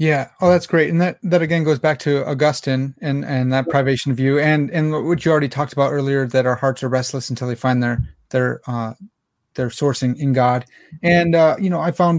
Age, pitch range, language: 30-49, 130-155 Hz, English